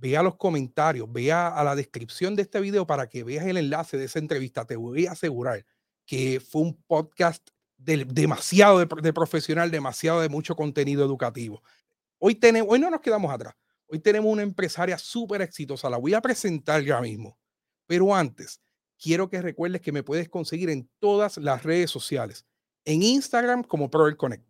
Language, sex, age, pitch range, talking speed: Spanish, male, 40-59, 155-215 Hz, 180 wpm